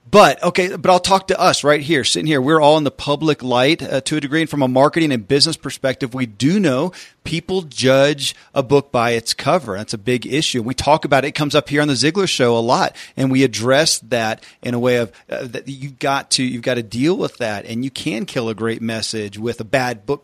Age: 40-59